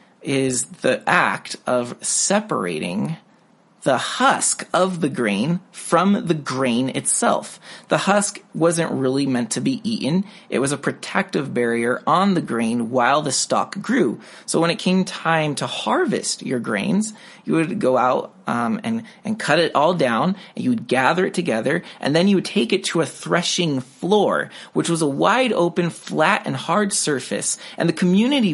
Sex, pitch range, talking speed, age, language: male, 150-215 Hz, 170 wpm, 30-49, English